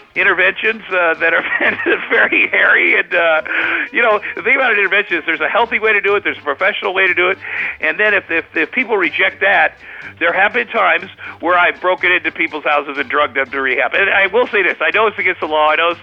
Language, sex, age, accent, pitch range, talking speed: English, male, 50-69, American, 155-200 Hz, 250 wpm